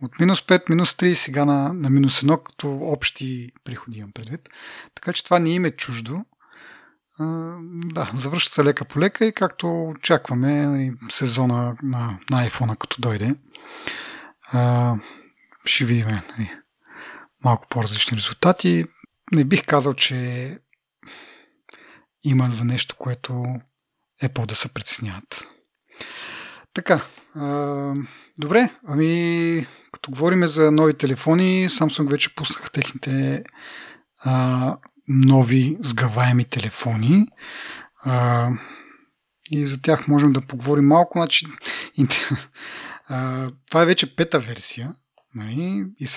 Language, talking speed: Bulgarian, 115 wpm